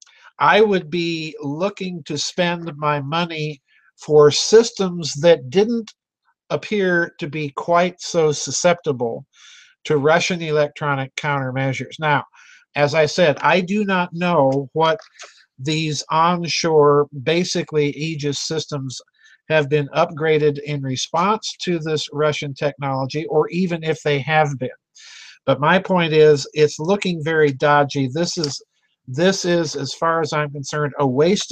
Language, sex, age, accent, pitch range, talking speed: English, male, 50-69, American, 145-175 Hz, 135 wpm